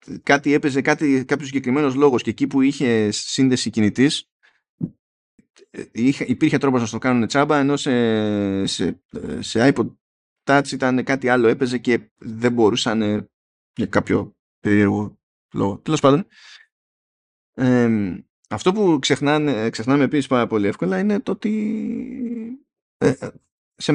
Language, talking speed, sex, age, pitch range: Greek, 130 wpm, male, 20-39, 110-145 Hz